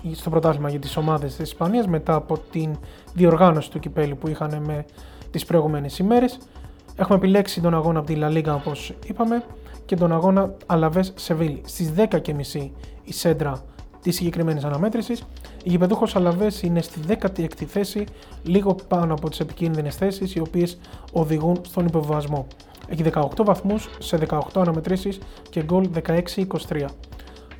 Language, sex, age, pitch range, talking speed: Greek, male, 20-39, 155-190 Hz, 145 wpm